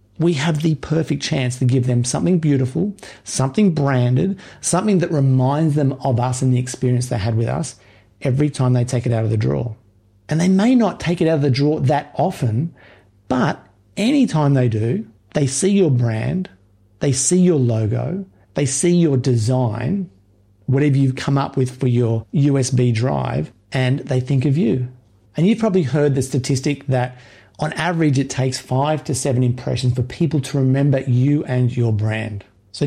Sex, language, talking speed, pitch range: male, English, 185 wpm, 120-155 Hz